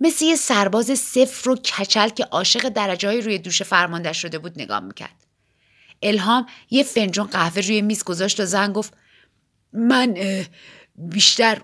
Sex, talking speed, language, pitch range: female, 145 wpm, Persian, 170-235 Hz